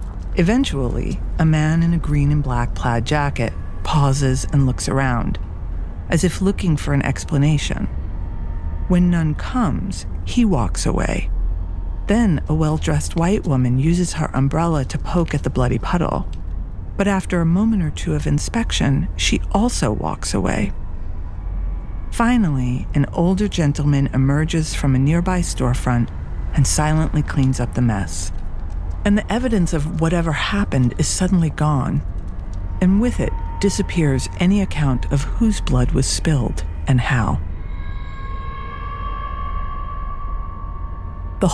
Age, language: 40-59, English